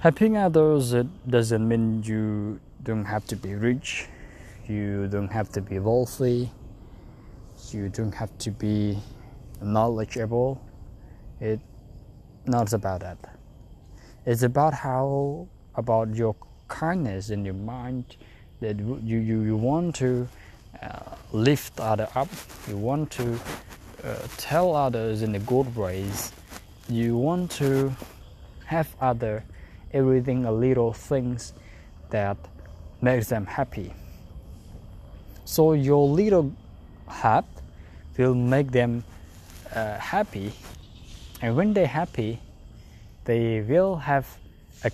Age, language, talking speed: 20-39, English, 115 wpm